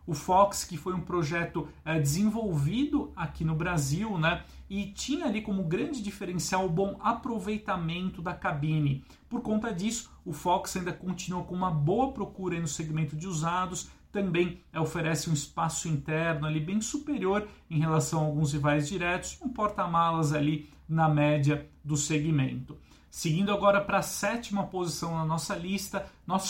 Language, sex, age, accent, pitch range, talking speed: Portuguese, male, 40-59, Brazilian, 155-185 Hz, 165 wpm